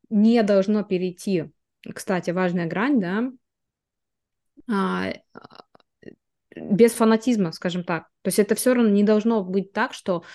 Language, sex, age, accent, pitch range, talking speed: Russian, female, 20-39, native, 185-235 Hz, 120 wpm